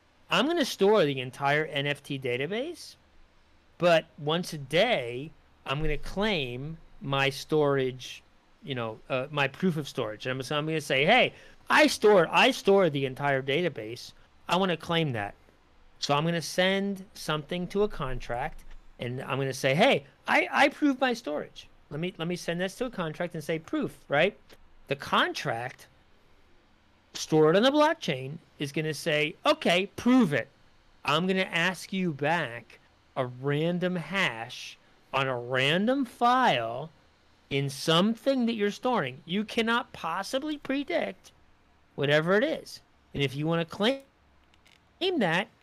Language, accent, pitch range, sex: English, American, 135-200 Hz, male